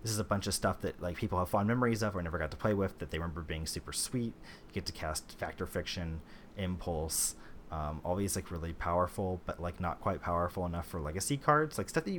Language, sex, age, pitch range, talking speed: English, male, 30-49, 80-100 Hz, 245 wpm